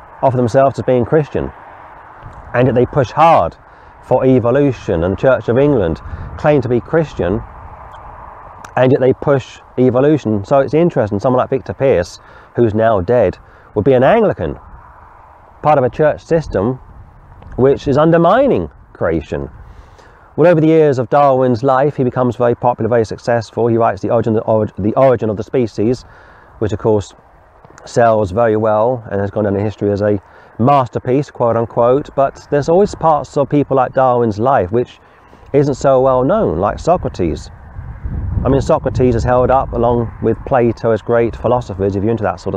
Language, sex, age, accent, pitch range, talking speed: English, male, 30-49, British, 105-130 Hz, 170 wpm